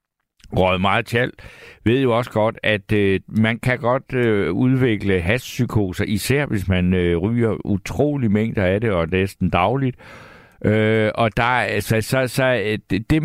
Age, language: 60-79, Danish